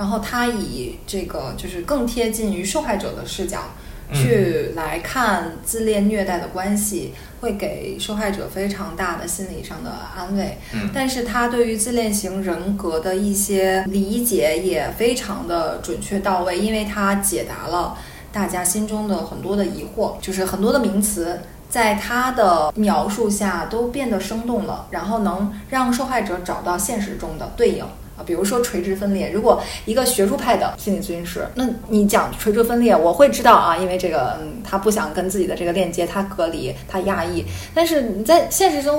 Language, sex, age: Chinese, female, 20-39